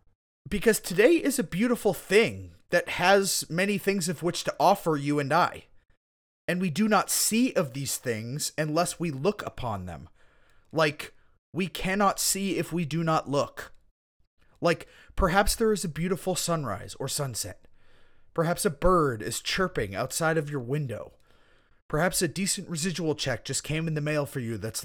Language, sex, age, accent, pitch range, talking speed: English, male, 30-49, American, 130-185 Hz, 170 wpm